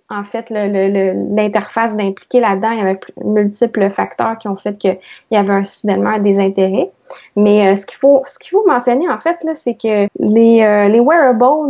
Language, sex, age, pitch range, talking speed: French, female, 20-39, 200-245 Hz, 210 wpm